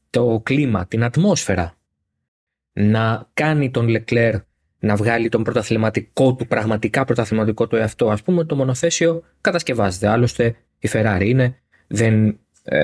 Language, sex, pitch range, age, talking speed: Greek, male, 110-155 Hz, 20-39, 125 wpm